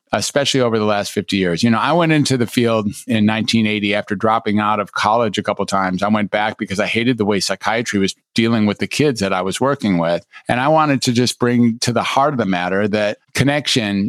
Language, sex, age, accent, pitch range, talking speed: English, male, 50-69, American, 105-125 Hz, 245 wpm